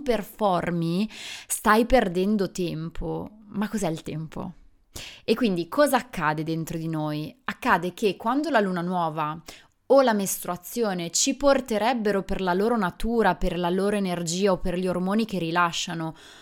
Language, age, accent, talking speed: Italian, 20-39, native, 145 wpm